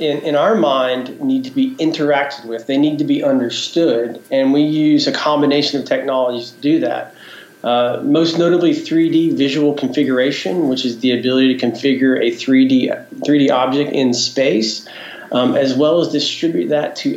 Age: 40-59